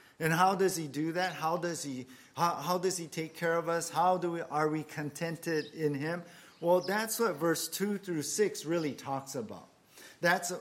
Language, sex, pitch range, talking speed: English, male, 150-185 Hz, 205 wpm